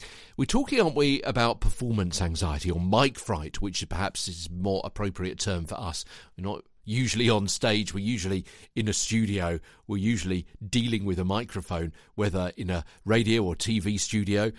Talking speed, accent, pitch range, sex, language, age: 175 wpm, British, 95-130 Hz, male, English, 50-69